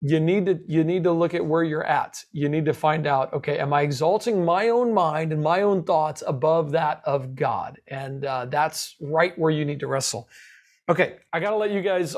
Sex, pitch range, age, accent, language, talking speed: male, 155-190 Hz, 40-59, American, English, 230 wpm